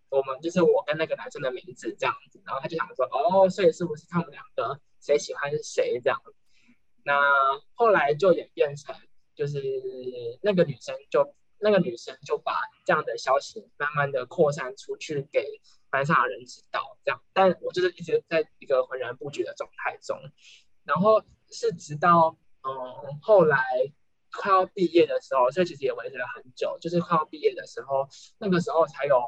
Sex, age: male, 10-29